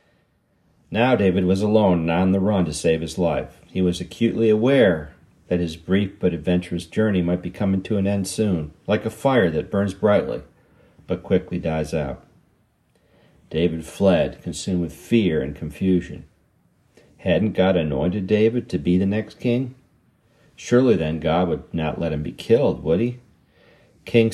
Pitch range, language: 85-110 Hz, English